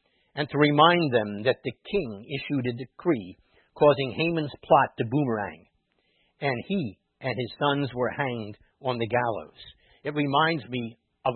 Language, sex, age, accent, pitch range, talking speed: English, male, 60-79, American, 105-135 Hz, 155 wpm